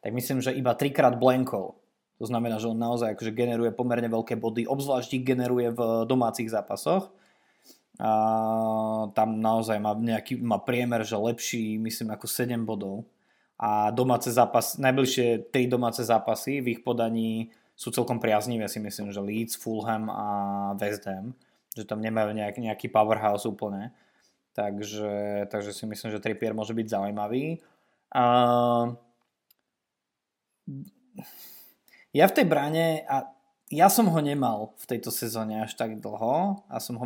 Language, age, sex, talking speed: Slovak, 20-39, male, 145 wpm